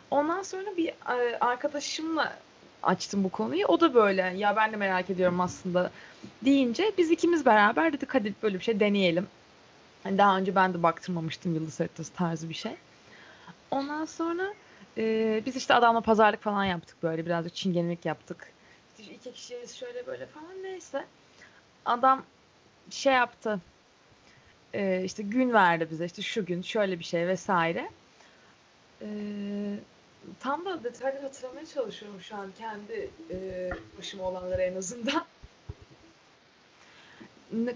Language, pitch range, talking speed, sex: Turkish, 190-270 Hz, 140 wpm, female